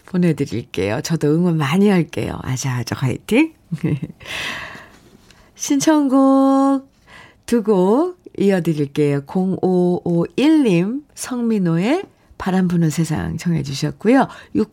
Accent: native